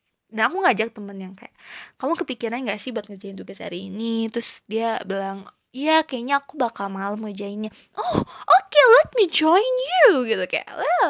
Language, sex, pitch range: Indonesian, female, 220-320 Hz